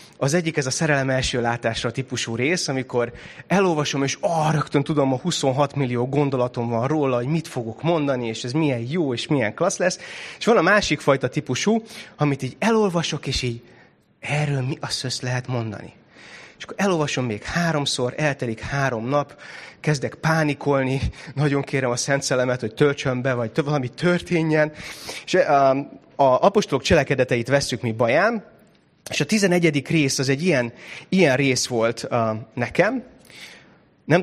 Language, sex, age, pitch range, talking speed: Hungarian, male, 30-49, 125-165 Hz, 160 wpm